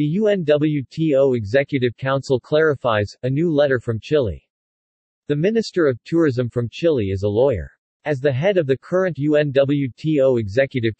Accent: American